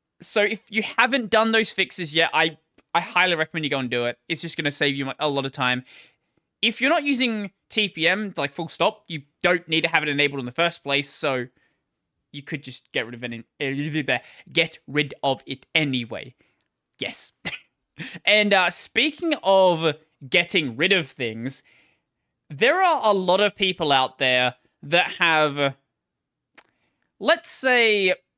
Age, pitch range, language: 20-39, 145-200 Hz, English